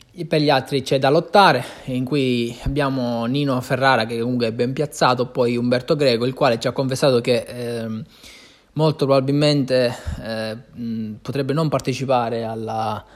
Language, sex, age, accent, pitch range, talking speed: Italian, male, 20-39, native, 115-140 Hz, 155 wpm